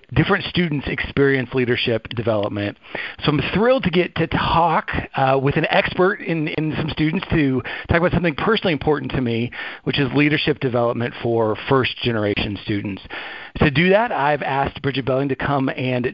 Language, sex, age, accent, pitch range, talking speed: English, male, 40-59, American, 115-140 Hz, 170 wpm